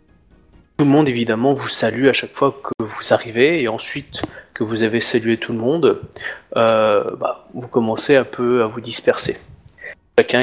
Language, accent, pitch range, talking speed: French, French, 105-145 Hz, 175 wpm